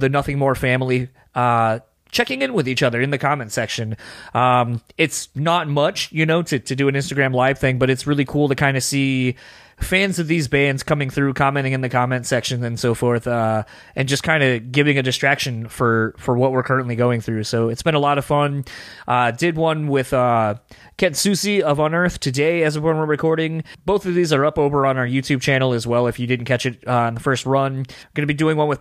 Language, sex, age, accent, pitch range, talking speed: English, male, 20-39, American, 125-150 Hz, 235 wpm